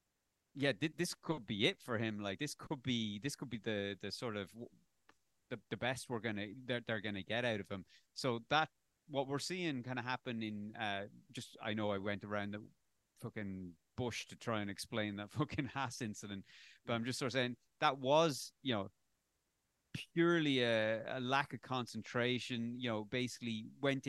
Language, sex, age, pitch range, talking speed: English, male, 30-49, 105-130 Hz, 195 wpm